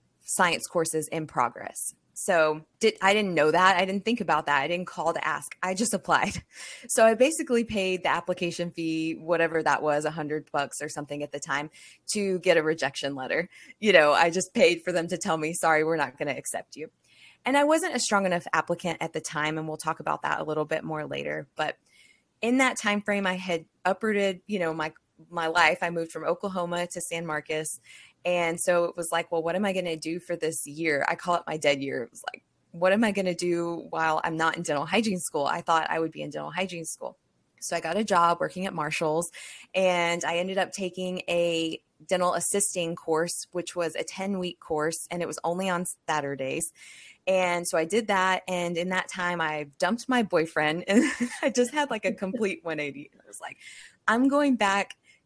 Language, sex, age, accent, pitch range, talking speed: English, female, 20-39, American, 160-190 Hz, 220 wpm